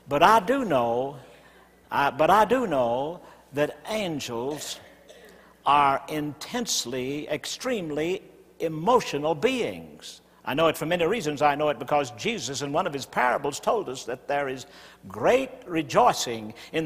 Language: English